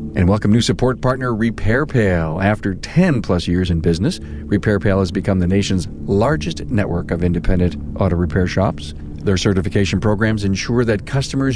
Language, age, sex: English, 50-69, male